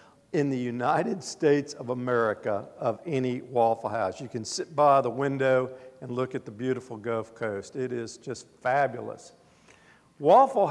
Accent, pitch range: American, 130-165 Hz